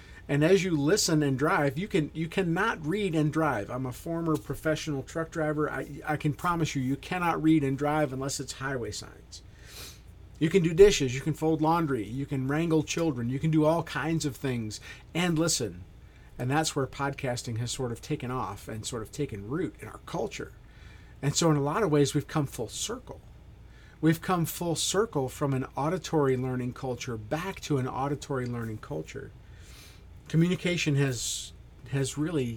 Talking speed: 185 wpm